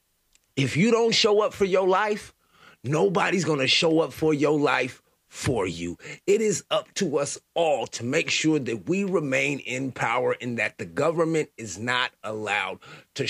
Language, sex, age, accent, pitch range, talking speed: English, male, 30-49, American, 130-185 Hz, 180 wpm